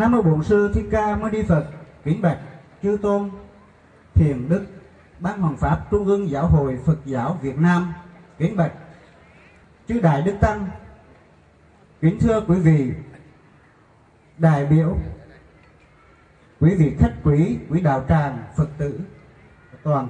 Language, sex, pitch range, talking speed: Vietnamese, male, 130-175 Hz, 140 wpm